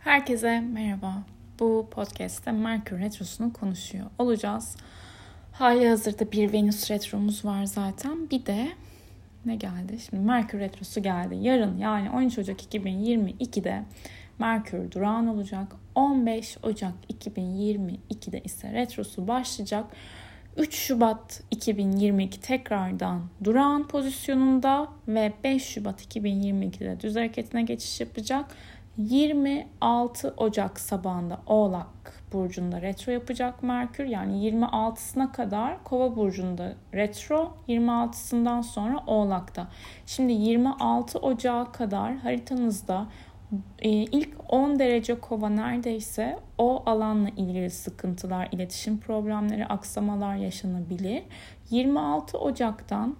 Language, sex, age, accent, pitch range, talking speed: Turkish, female, 10-29, native, 195-240 Hz, 100 wpm